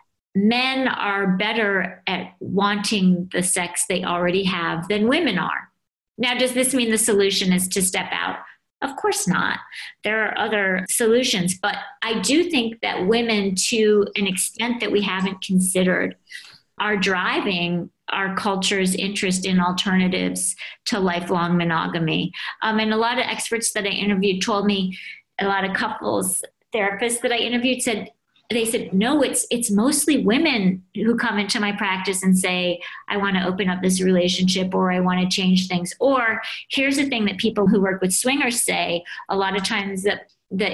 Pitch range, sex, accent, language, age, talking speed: 185-220 Hz, female, American, English, 40-59, 170 wpm